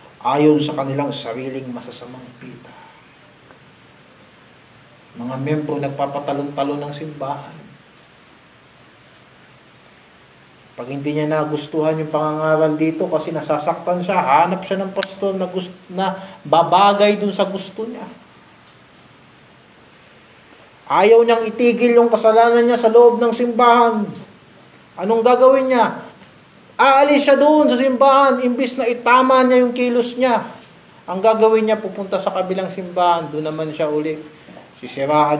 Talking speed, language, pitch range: 120 wpm, Filipino, 140-235 Hz